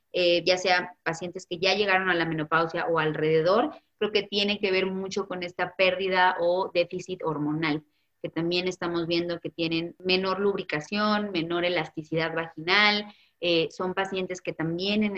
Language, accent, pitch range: Spanish, Mexican, 165-200 Hz